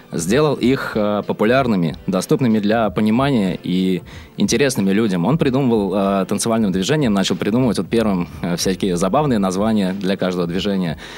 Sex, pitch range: male, 95-130 Hz